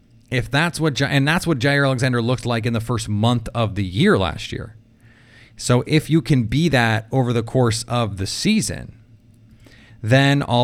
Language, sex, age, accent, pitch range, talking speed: English, male, 30-49, American, 110-125 Hz, 185 wpm